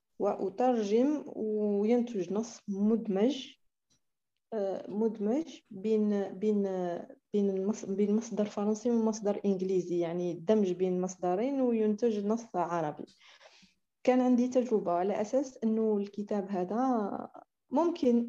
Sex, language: female, Arabic